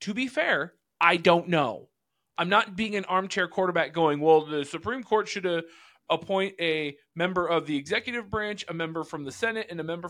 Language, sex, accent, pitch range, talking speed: English, male, American, 145-190 Hz, 200 wpm